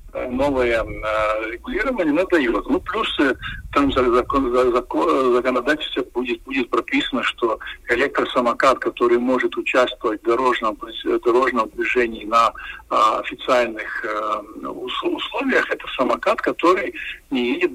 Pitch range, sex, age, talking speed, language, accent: 250-370 Hz, male, 50-69, 90 wpm, Russian, native